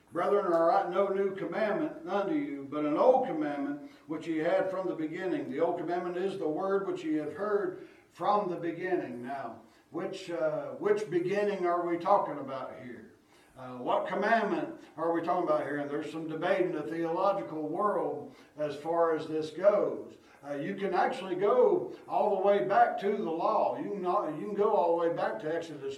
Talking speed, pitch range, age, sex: 200 wpm, 155-235 Hz, 60-79, male